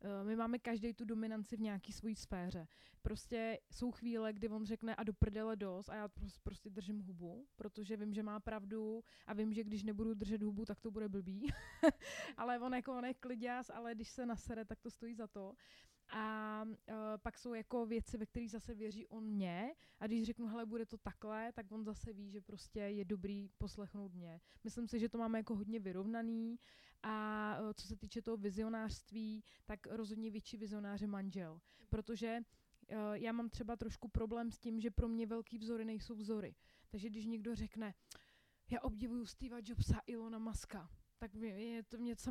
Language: Czech